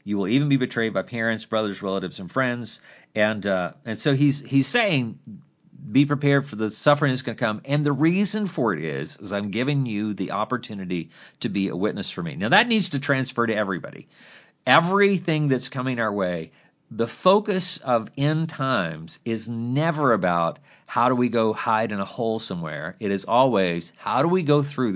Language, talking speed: English, 195 wpm